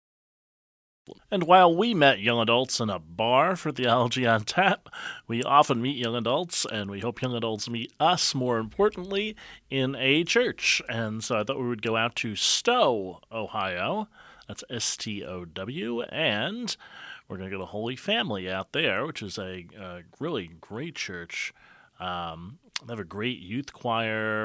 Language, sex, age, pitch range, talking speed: English, male, 30-49, 95-125 Hz, 165 wpm